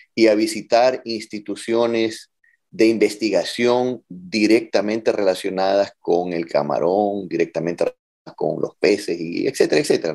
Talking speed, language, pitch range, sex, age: 105 wpm, Spanish, 100-155 Hz, male, 30-49